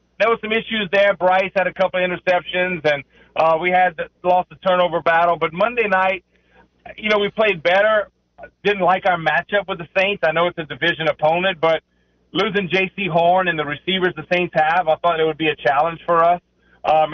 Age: 40-59